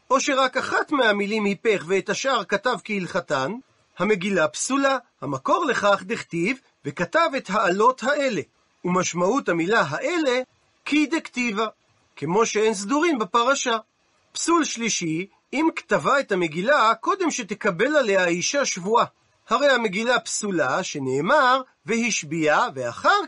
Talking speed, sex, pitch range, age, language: 115 wpm, male, 190-275 Hz, 40-59, Hebrew